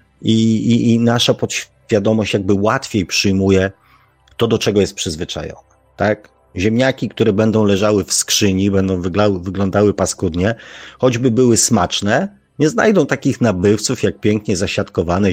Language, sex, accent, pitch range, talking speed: Polish, male, native, 95-115 Hz, 125 wpm